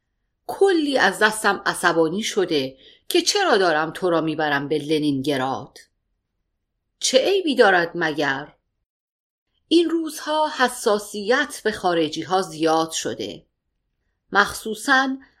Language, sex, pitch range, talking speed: Persian, female, 160-245 Hz, 100 wpm